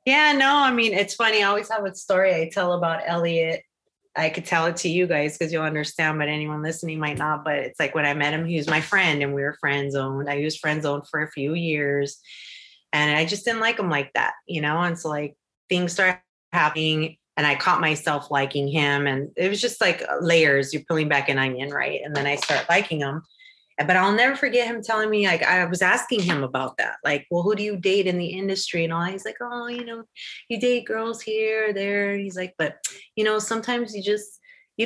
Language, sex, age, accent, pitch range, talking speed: English, female, 30-49, American, 150-205 Hz, 235 wpm